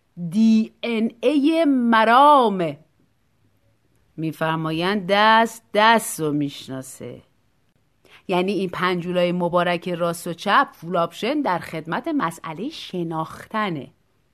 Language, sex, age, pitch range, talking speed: Persian, female, 30-49, 170-265 Hz, 95 wpm